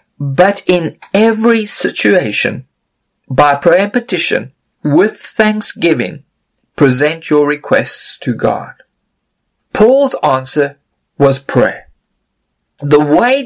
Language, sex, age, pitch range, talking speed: English, male, 50-69, 160-260 Hz, 95 wpm